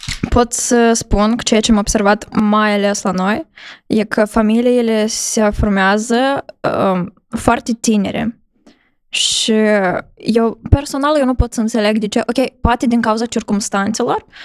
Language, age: Romanian, 10-29